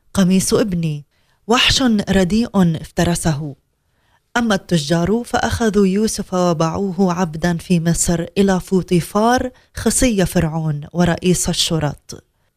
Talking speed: 90 wpm